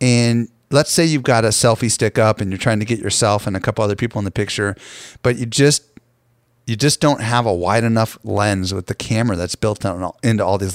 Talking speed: 235 wpm